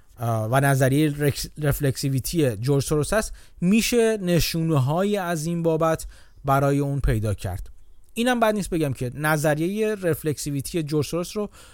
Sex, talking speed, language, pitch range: male, 125 wpm, Persian, 130-170 Hz